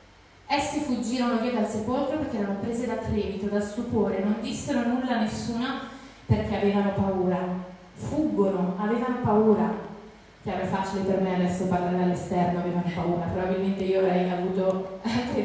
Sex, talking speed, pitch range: female, 145 wpm, 195-245 Hz